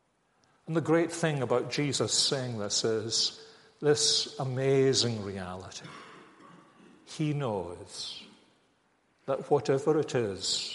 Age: 50-69